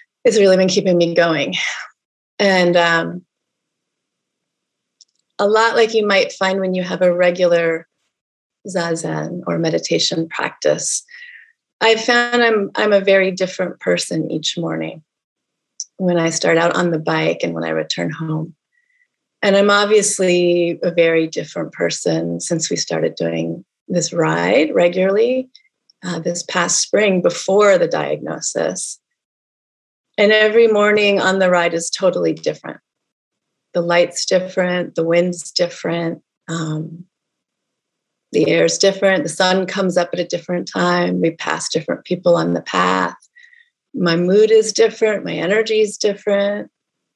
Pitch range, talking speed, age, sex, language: 170-210 Hz, 135 wpm, 30-49, female, English